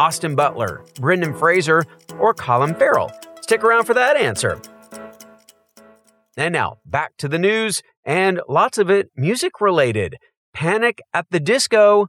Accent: American